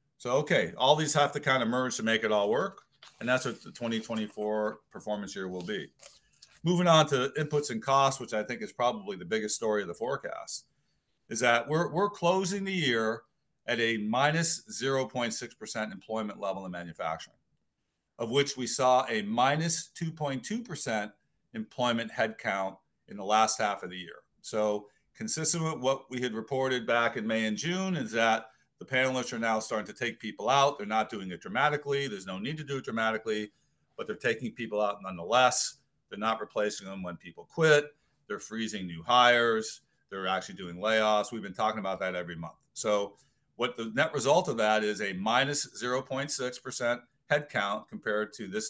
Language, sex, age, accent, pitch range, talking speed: English, male, 40-59, American, 105-145 Hz, 185 wpm